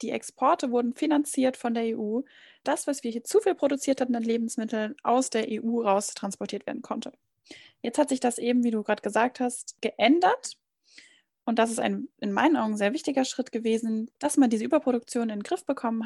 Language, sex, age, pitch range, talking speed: German, female, 10-29, 215-260 Hz, 200 wpm